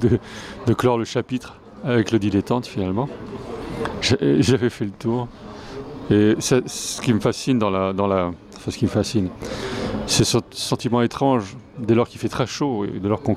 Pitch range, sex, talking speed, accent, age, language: 105-125 Hz, male, 195 wpm, French, 30-49, French